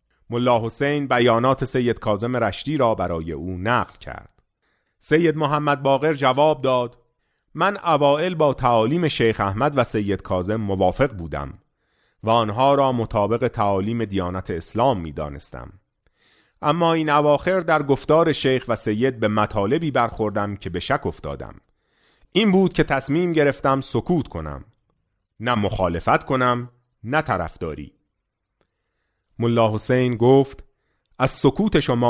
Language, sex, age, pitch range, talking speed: Persian, male, 40-59, 105-145 Hz, 125 wpm